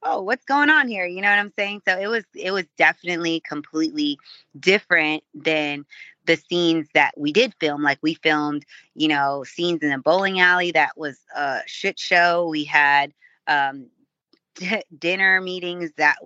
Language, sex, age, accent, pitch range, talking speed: English, female, 20-39, American, 150-175 Hz, 170 wpm